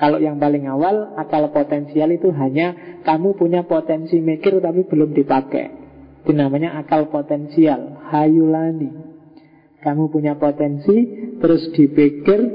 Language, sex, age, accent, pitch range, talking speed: Indonesian, male, 40-59, native, 150-185 Hz, 120 wpm